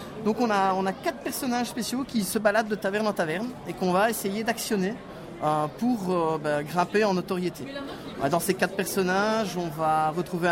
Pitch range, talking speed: 170-225 Hz, 195 wpm